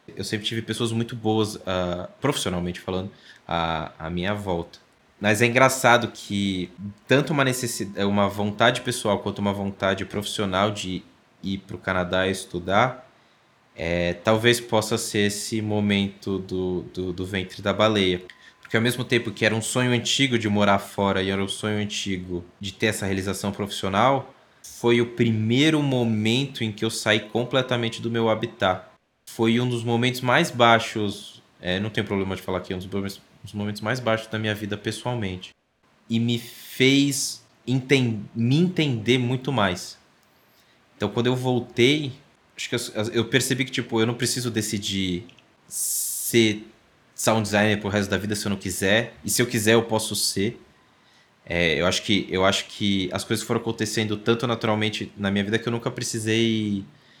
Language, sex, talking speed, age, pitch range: Portuguese, male, 170 wpm, 20-39, 100-120 Hz